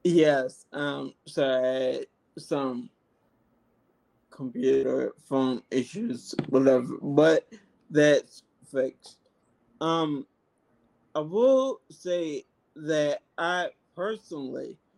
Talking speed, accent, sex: 70 wpm, American, male